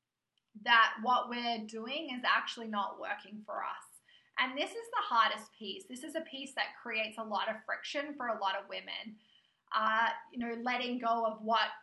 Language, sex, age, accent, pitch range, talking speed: English, female, 20-39, Australian, 210-250 Hz, 195 wpm